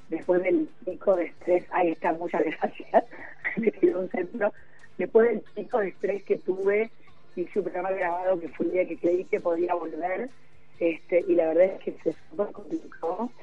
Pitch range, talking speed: 165-205 Hz, 170 wpm